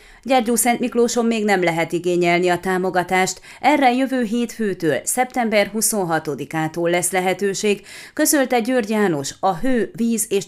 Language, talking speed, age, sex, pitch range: Hungarian, 130 wpm, 30-49, female, 175-220 Hz